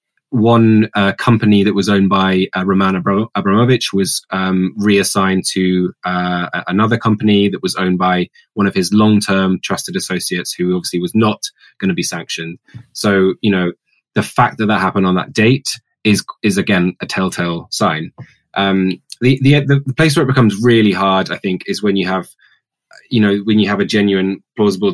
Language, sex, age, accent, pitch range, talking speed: English, male, 20-39, British, 95-110 Hz, 185 wpm